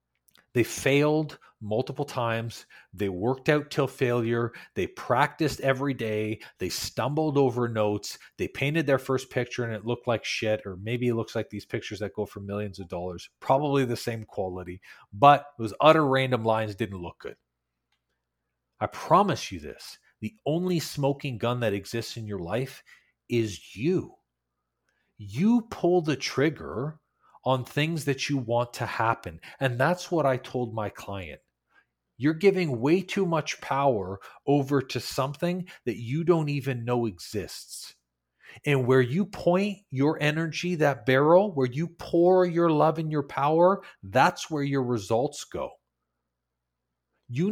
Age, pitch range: 40-59, 110-150 Hz